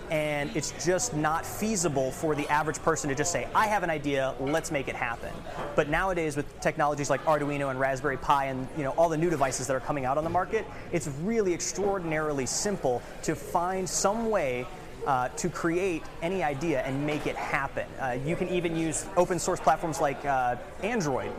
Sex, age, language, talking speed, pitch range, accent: male, 30-49, English, 195 wpm, 140-170 Hz, American